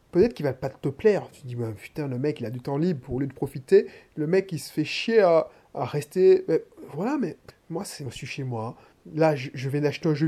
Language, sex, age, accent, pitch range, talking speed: French, male, 20-39, French, 145-205 Hz, 285 wpm